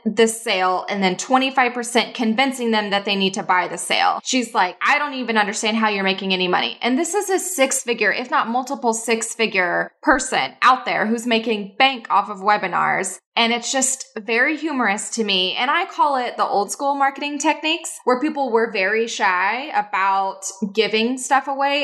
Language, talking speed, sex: English, 190 wpm, female